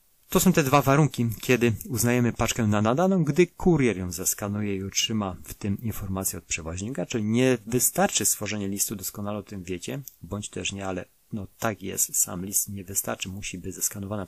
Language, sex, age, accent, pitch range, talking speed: Polish, male, 30-49, native, 100-120 Hz, 185 wpm